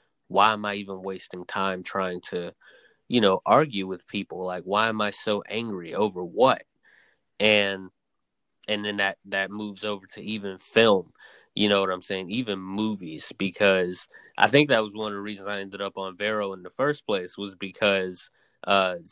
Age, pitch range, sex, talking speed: 20-39, 95-105 Hz, male, 185 wpm